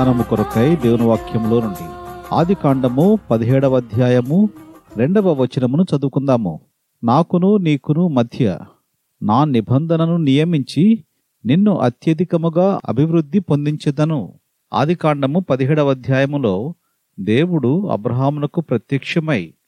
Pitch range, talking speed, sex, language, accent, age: 130-170 Hz, 65 wpm, male, Telugu, native, 40-59